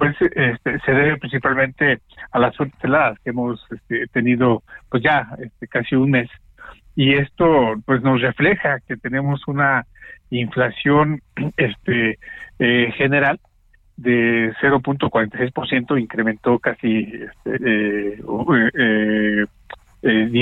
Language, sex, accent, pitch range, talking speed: Spanish, male, Mexican, 115-140 Hz, 115 wpm